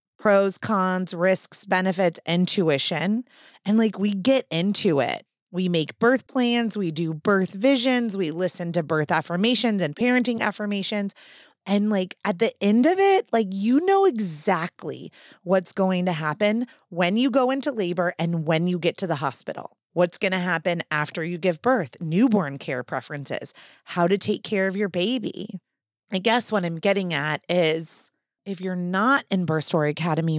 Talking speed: 170 wpm